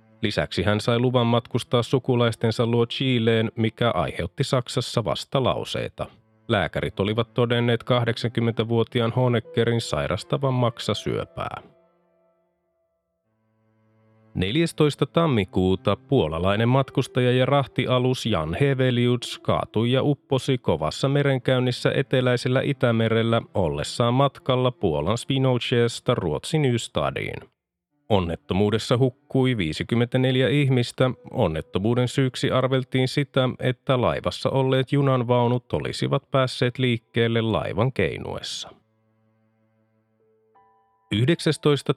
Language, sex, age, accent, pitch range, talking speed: Finnish, male, 30-49, native, 110-130 Hz, 85 wpm